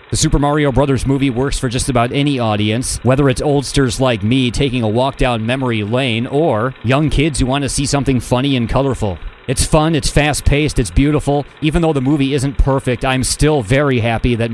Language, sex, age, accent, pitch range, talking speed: English, male, 30-49, American, 120-145 Hz, 205 wpm